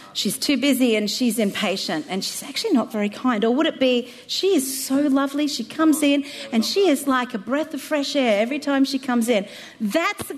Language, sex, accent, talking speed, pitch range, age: English, female, Australian, 225 wpm, 265-355 Hz, 40-59